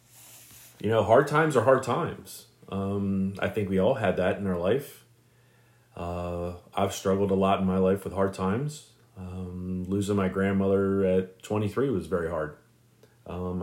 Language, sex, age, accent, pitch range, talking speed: English, male, 30-49, American, 95-120 Hz, 165 wpm